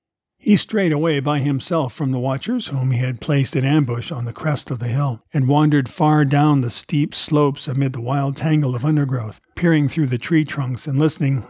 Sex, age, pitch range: male, 50-69, 125-155 Hz